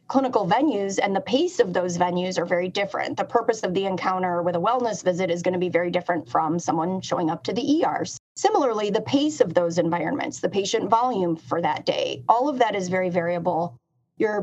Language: English